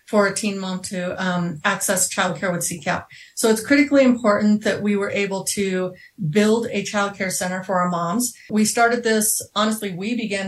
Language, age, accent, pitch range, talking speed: English, 30-49, American, 185-215 Hz, 185 wpm